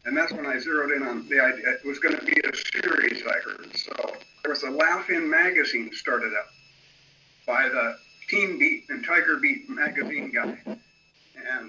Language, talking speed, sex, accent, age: English, 185 wpm, male, American, 50-69